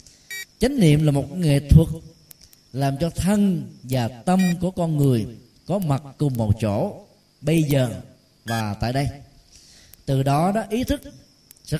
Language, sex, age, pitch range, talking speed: Vietnamese, male, 20-39, 125-175 Hz, 155 wpm